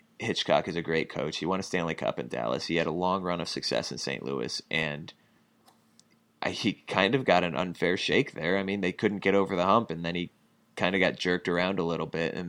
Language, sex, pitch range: English, male, 80-95 Hz